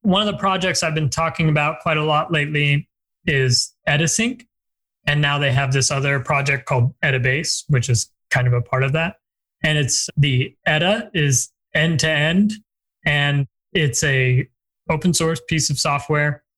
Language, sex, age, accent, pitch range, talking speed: English, male, 20-39, American, 125-150 Hz, 165 wpm